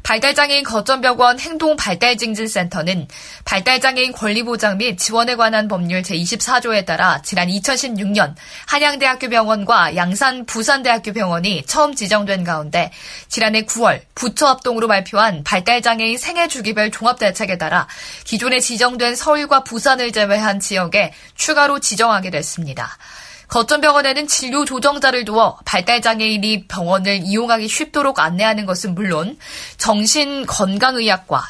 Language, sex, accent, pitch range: Korean, female, native, 200-260 Hz